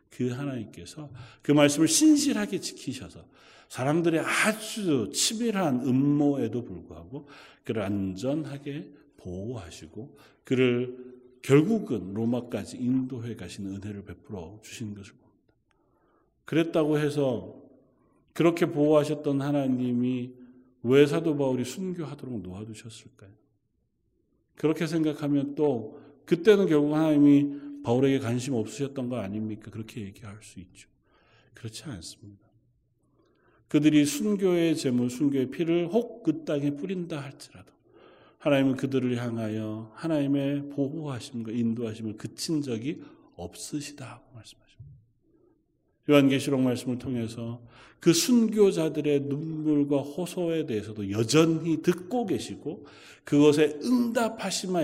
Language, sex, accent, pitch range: Korean, male, native, 115-150 Hz